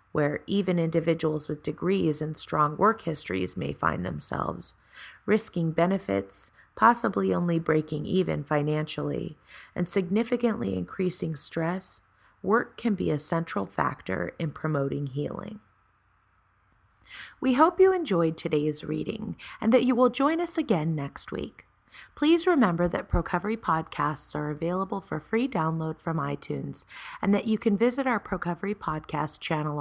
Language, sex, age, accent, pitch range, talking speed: English, female, 30-49, American, 150-200 Hz, 135 wpm